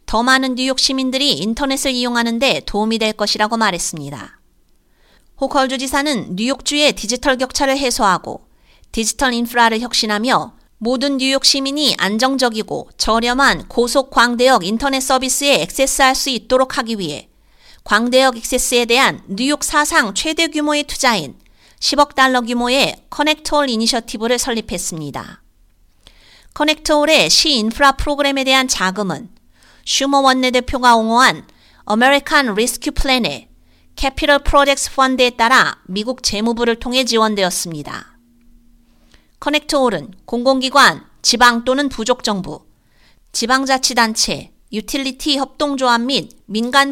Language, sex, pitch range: Korean, female, 220-275 Hz